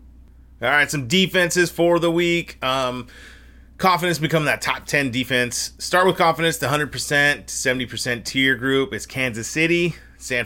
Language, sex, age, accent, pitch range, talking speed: English, male, 30-49, American, 115-150 Hz, 155 wpm